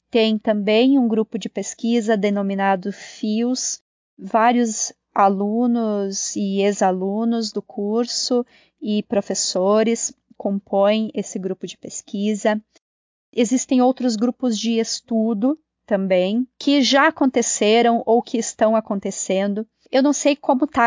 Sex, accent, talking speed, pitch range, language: female, Brazilian, 110 wpm, 200-230 Hz, Portuguese